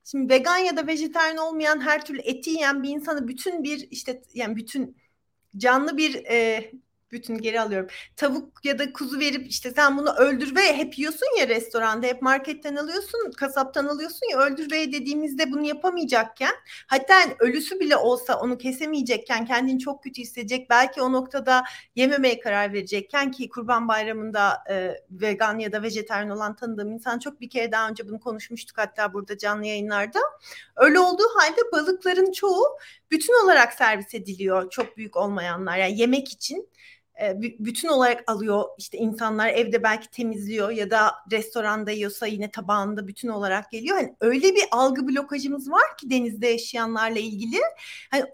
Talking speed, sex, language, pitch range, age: 160 wpm, female, Turkish, 220-300 Hz, 40-59